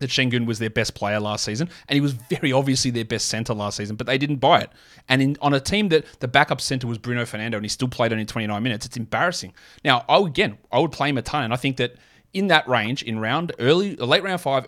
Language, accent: English, Australian